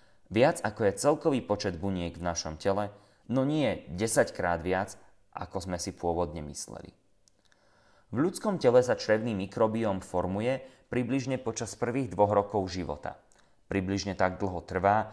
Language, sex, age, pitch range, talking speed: Slovak, male, 30-49, 90-115 Hz, 145 wpm